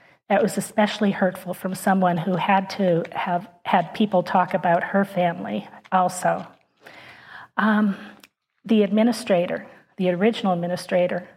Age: 40-59